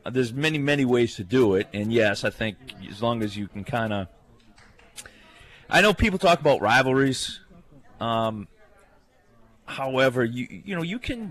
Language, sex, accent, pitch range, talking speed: English, male, American, 115-145 Hz, 165 wpm